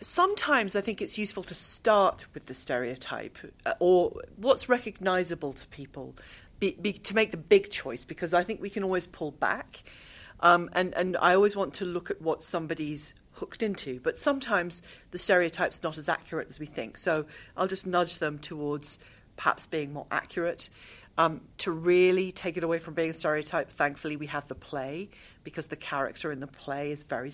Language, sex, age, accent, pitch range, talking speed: English, female, 40-59, British, 150-195 Hz, 185 wpm